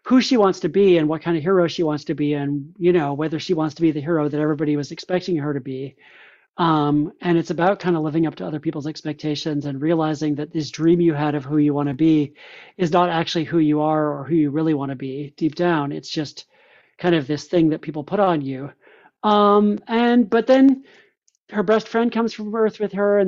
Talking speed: 245 wpm